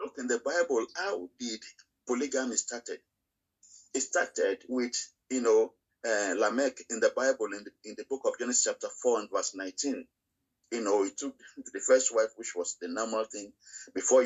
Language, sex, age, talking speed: English, male, 50-69, 180 wpm